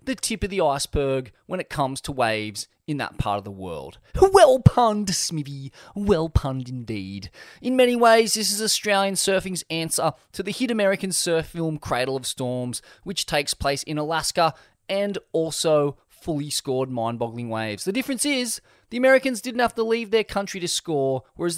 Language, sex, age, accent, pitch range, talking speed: English, male, 20-39, Australian, 130-185 Hz, 180 wpm